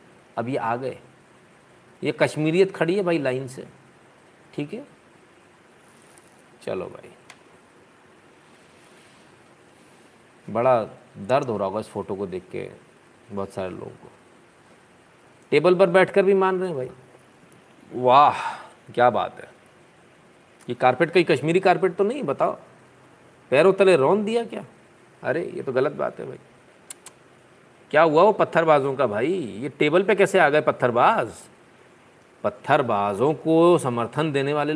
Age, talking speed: 50-69, 135 wpm